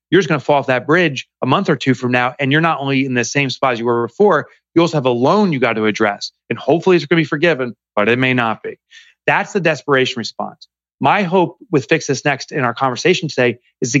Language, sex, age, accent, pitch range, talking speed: English, male, 30-49, American, 130-170 Hz, 270 wpm